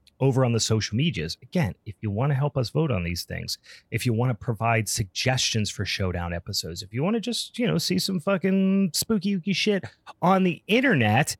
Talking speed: 210 wpm